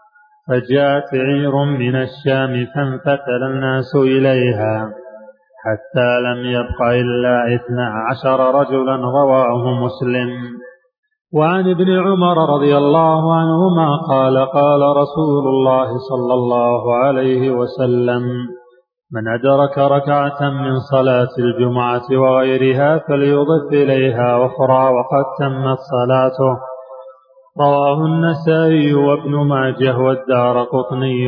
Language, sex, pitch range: Arabic, male, 125-140 Hz